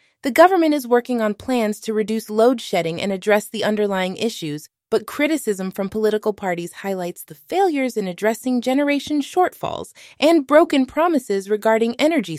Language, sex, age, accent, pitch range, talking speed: English, female, 20-39, American, 200-265 Hz, 155 wpm